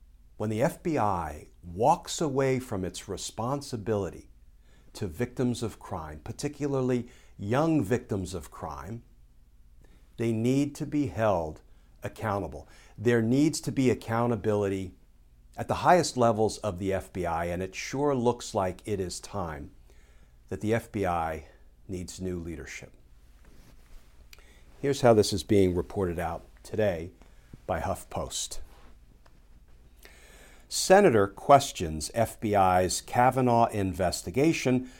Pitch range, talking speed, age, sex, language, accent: 75-125 Hz, 110 wpm, 50-69, male, English, American